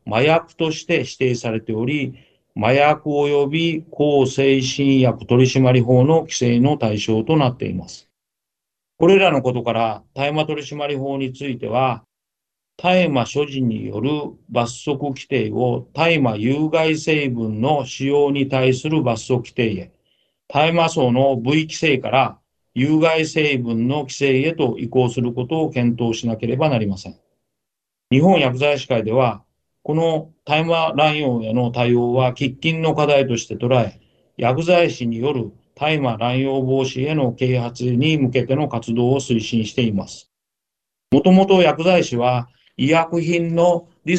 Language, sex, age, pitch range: Japanese, male, 40-59, 120-150 Hz